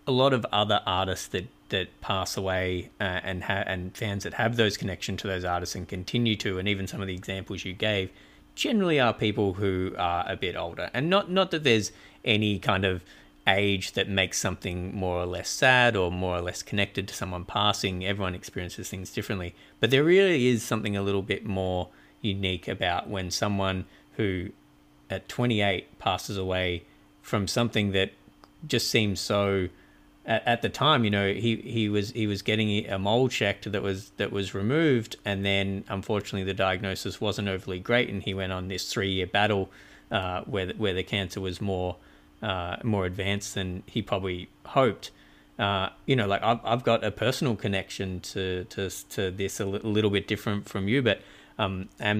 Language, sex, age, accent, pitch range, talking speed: English, male, 30-49, Australian, 95-110 Hz, 185 wpm